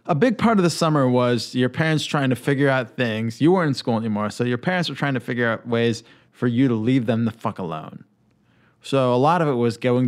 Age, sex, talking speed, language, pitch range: 20-39, male, 255 wpm, English, 110-140 Hz